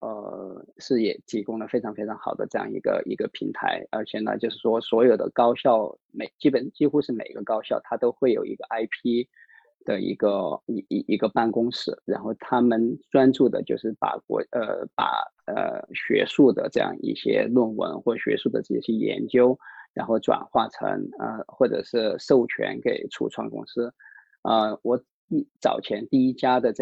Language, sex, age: Chinese, male, 20-39